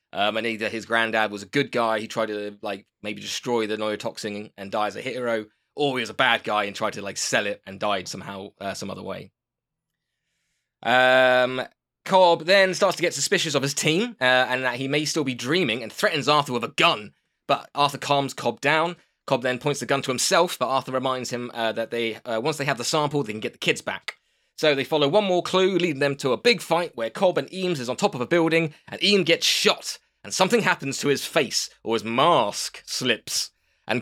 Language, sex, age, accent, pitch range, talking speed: English, male, 20-39, British, 120-175 Hz, 235 wpm